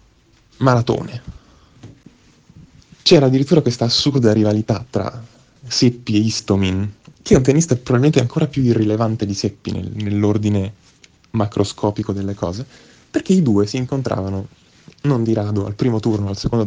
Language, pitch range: Italian, 105-140 Hz